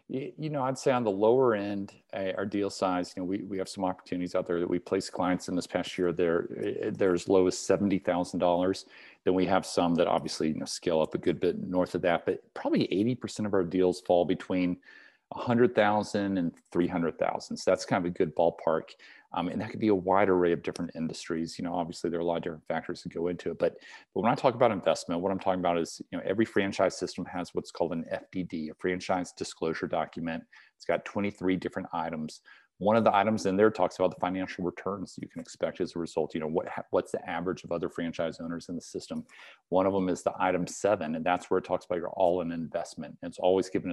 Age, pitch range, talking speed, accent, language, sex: 40-59, 85-100 Hz, 240 wpm, American, English, male